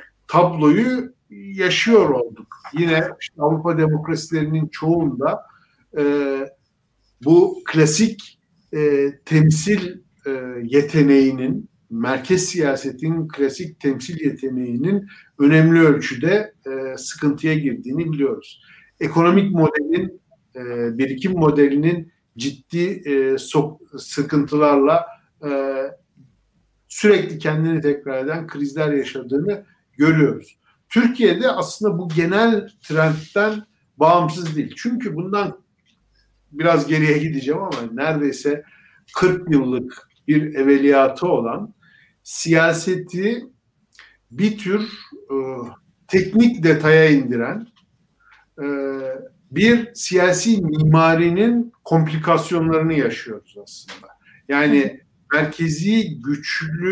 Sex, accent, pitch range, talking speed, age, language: male, native, 145-185 Hz, 80 wpm, 60-79, Turkish